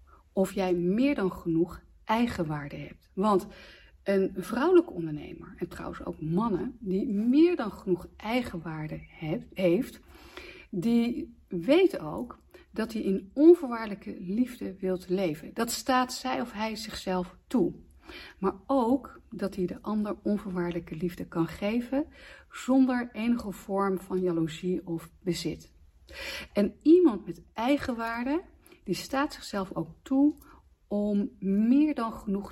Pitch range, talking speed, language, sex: 175-245 Hz, 125 wpm, Dutch, female